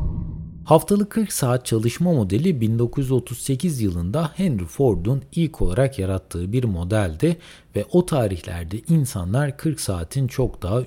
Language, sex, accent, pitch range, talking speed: Turkish, male, native, 95-155 Hz, 120 wpm